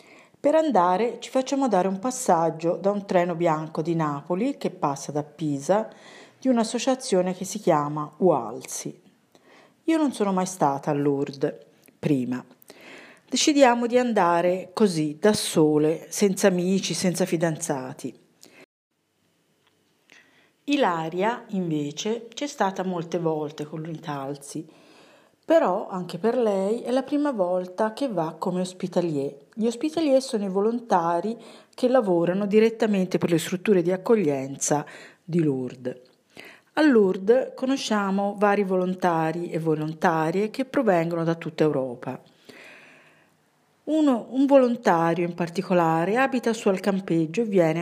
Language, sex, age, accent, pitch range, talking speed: Italian, female, 50-69, native, 160-230 Hz, 125 wpm